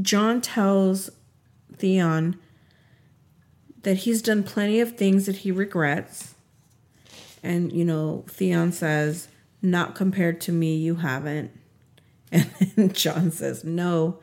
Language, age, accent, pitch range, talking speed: English, 40-59, American, 140-200 Hz, 115 wpm